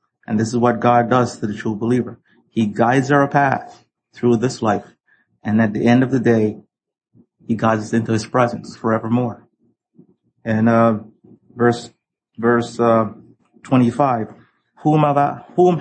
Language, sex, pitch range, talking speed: English, male, 115-140 Hz, 155 wpm